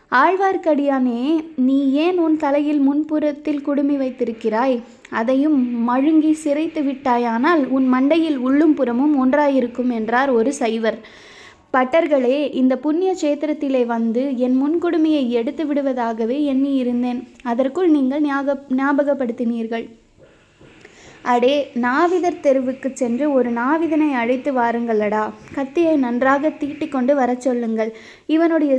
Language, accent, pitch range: Tamil, native, 250-300 Hz